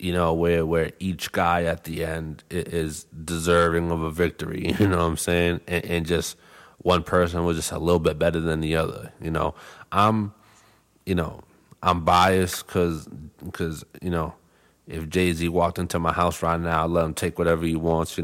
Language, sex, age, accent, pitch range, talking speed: English, male, 30-49, American, 85-95 Hz, 200 wpm